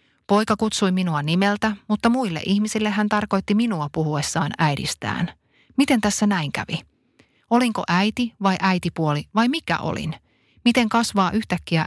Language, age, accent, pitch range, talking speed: Finnish, 30-49, native, 155-210 Hz, 130 wpm